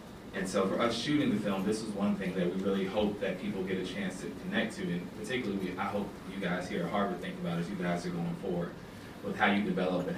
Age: 20-39